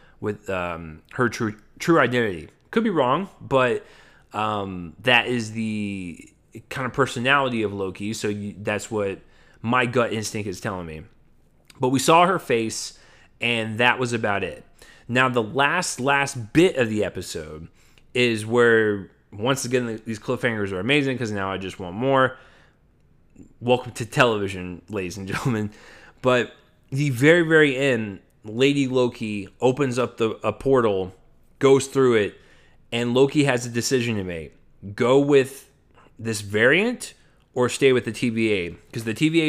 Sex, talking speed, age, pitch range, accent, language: male, 155 wpm, 20-39, 105-135 Hz, American, English